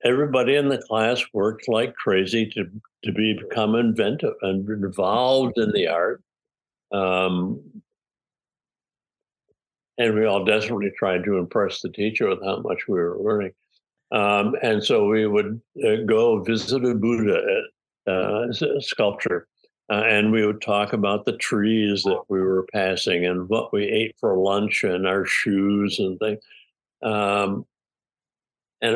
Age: 60-79